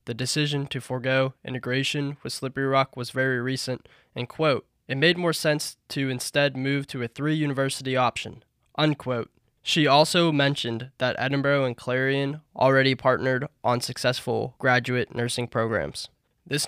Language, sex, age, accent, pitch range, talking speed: English, male, 10-29, American, 125-140 Hz, 145 wpm